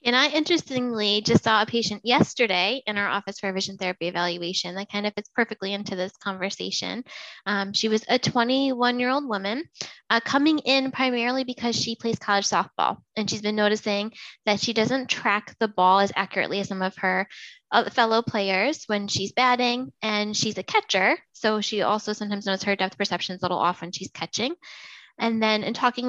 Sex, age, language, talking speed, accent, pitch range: female, 20-39, English, 190 wpm, American, 200-245 Hz